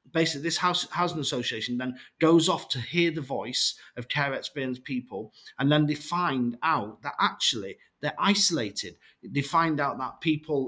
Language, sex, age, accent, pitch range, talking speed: English, male, 40-59, British, 125-175 Hz, 170 wpm